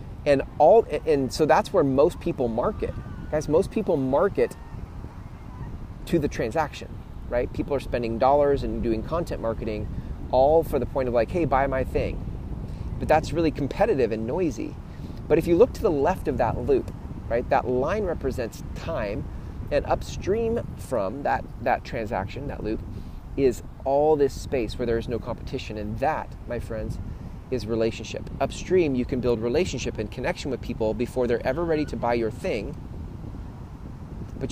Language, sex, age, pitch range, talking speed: English, male, 30-49, 110-140 Hz, 170 wpm